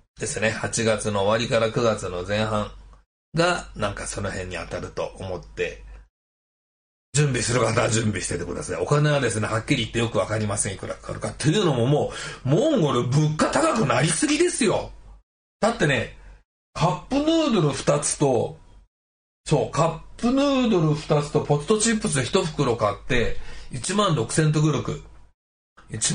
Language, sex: Japanese, male